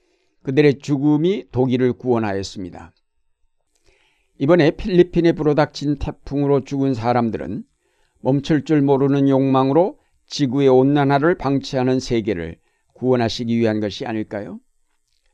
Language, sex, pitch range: Korean, male, 120-150 Hz